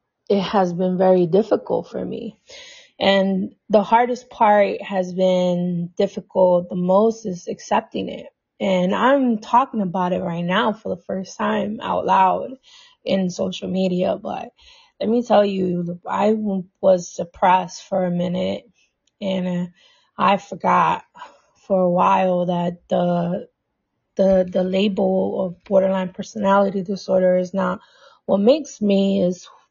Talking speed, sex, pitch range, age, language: 135 wpm, female, 180-225 Hz, 20-39, English